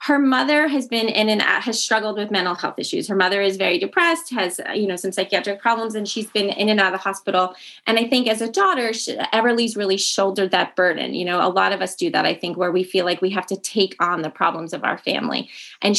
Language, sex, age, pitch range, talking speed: English, female, 20-39, 180-220 Hz, 265 wpm